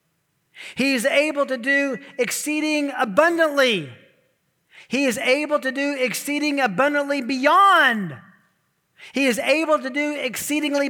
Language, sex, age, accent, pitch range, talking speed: English, male, 40-59, American, 175-270 Hz, 115 wpm